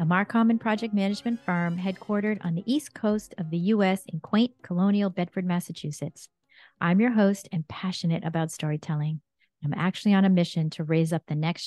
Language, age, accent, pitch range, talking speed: English, 40-59, American, 160-200 Hz, 185 wpm